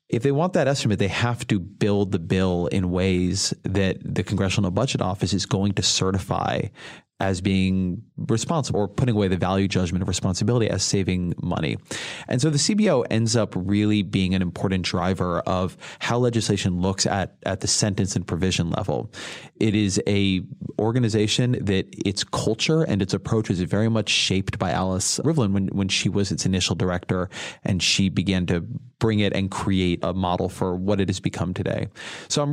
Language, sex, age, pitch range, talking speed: English, male, 30-49, 95-115 Hz, 185 wpm